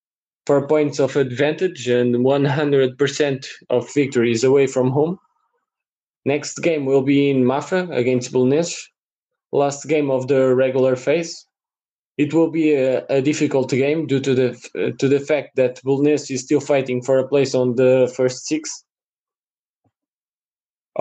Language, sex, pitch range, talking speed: English, male, 125-145 Hz, 150 wpm